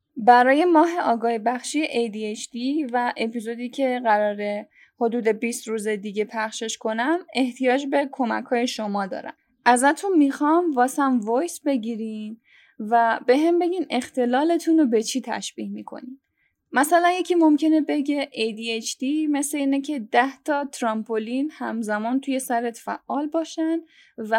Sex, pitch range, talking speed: female, 230-305 Hz, 130 wpm